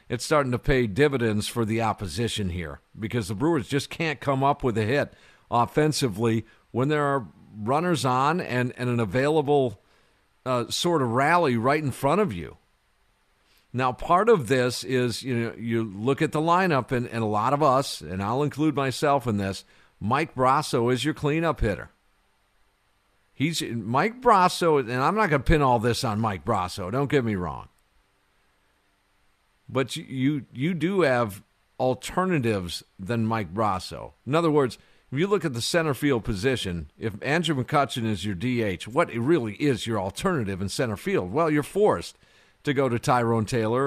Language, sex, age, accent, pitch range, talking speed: English, male, 50-69, American, 100-145 Hz, 175 wpm